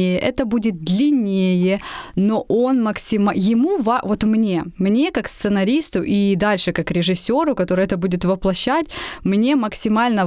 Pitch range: 185-235 Hz